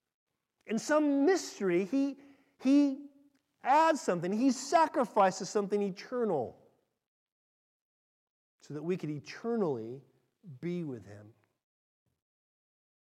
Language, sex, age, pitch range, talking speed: English, male, 40-59, 120-185 Hz, 85 wpm